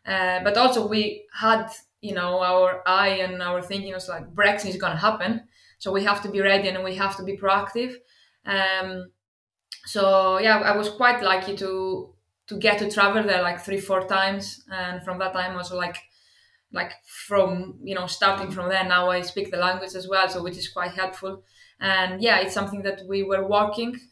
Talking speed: 200 wpm